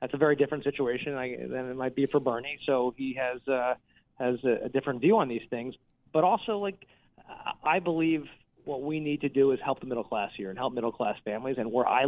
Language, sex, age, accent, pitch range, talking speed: English, male, 30-49, American, 120-150 Hz, 235 wpm